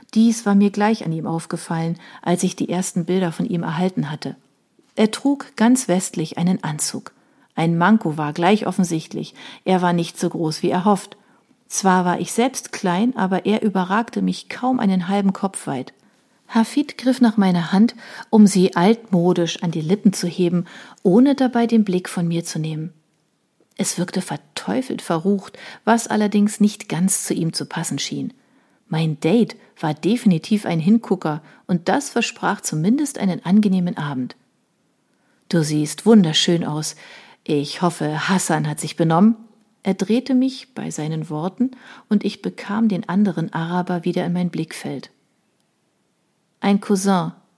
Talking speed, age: 155 wpm, 40-59